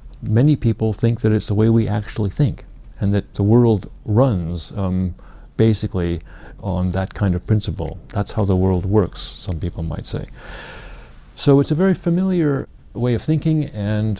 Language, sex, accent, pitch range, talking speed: English, male, American, 95-120 Hz, 170 wpm